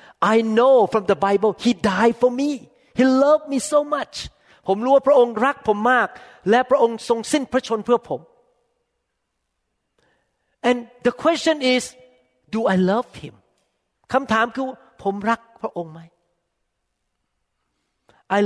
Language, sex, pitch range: Thai, male, 155-230 Hz